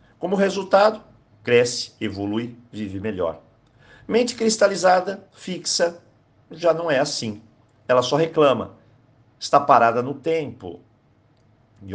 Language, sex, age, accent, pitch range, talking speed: Portuguese, male, 50-69, Brazilian, 115-175 Hz, 105 wpm